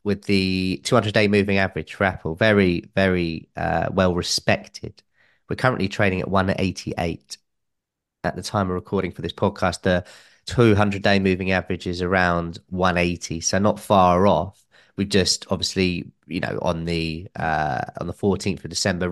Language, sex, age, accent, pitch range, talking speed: English, male, 30-49, British, 95-110 Hz, 155 wpm